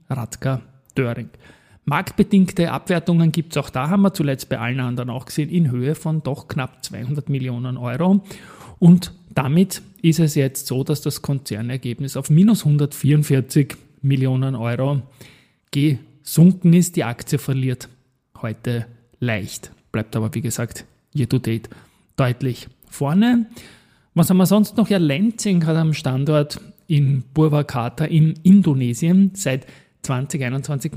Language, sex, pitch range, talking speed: German, male, 130-160 Hz, 135 wpm